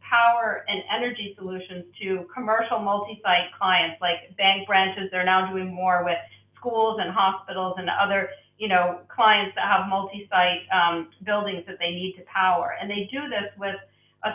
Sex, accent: female, American